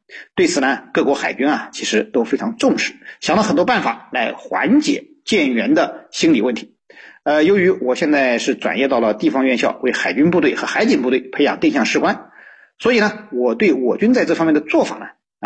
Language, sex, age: Chinese, male, 50-69